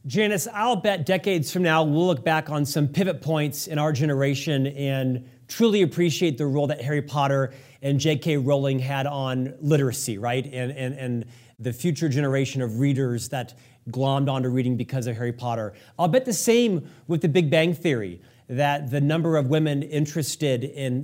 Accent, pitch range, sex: American, 135-170 Hz, male